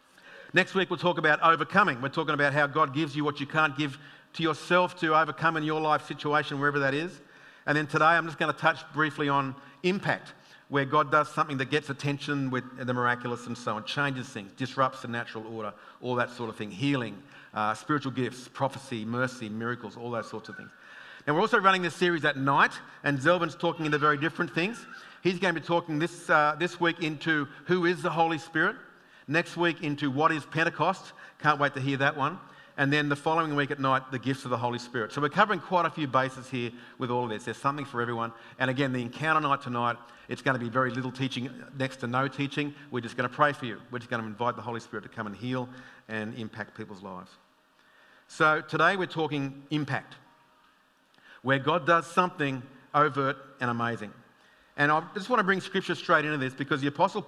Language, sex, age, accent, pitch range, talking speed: English, male, 50-69, Australian, 125-160 Hz, 220 wpm